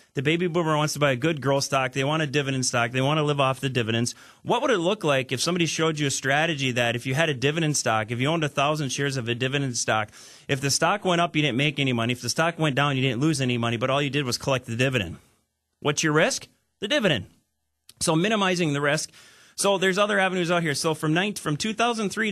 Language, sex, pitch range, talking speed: English, male, 130-165 Hz, 255 wpm